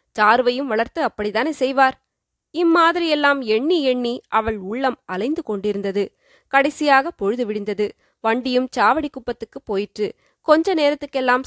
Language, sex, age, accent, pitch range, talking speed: Tamil, female, 20-39, native, 215-275 Hz, 105 wpm